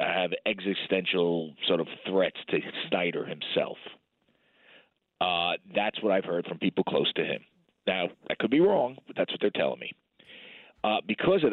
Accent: American